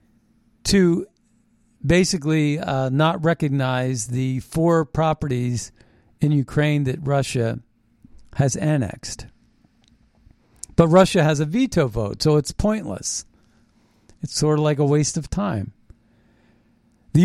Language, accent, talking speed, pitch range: English, American, 110 wpm, 115-160 Hz